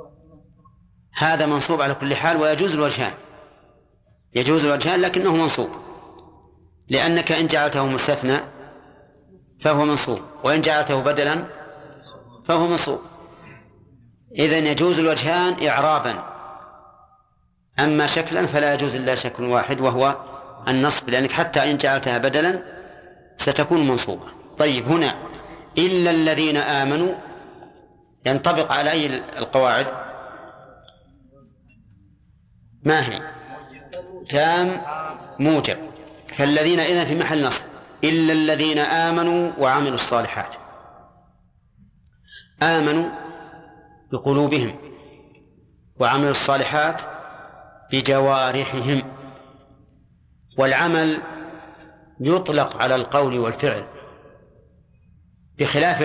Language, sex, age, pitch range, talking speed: Arabic, male, 40-59, 130-160 Hz, 80 wpm